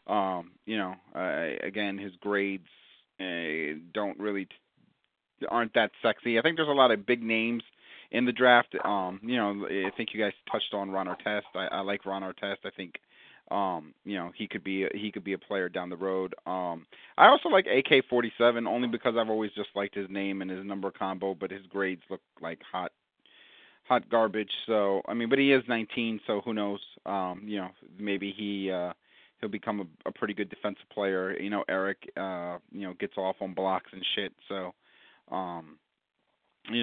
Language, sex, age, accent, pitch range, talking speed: English, male, 30-49, American, 90-105 Hz, 200 wpm